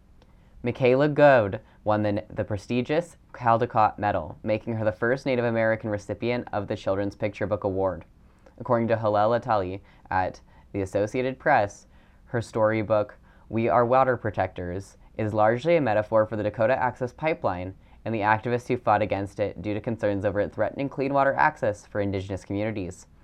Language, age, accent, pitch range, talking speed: English, 10-29, American, 100-125 Hz, 165 wpm